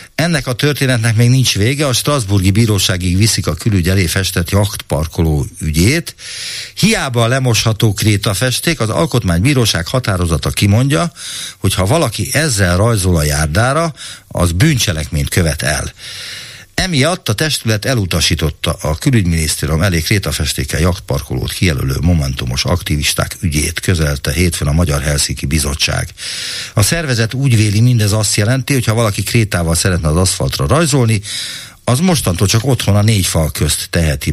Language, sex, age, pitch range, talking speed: Hungarian, male, 60-79, 85-125 Hz, 135 wpm